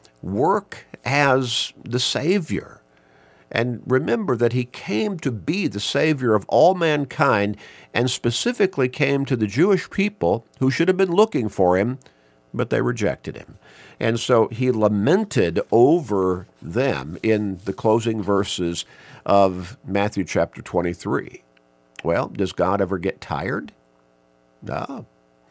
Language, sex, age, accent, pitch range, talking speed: English, male, 50-69, American, 85-130 Hz, 130 wpm